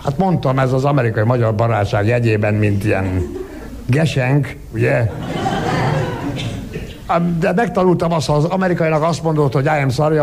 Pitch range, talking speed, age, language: 115-160 Hz, 125 wpm, 60-79, Hungarian